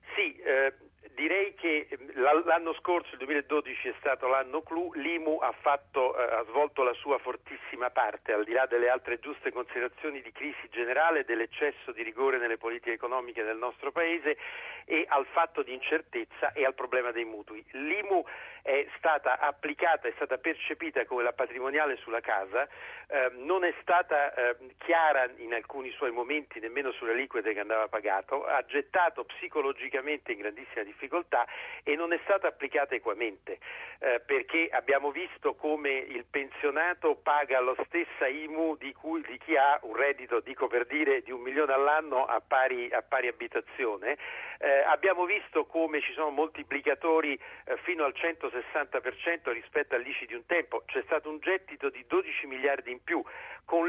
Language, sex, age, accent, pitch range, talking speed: Italian, male, 50-69, native, 135-195 Hz, 165 wpm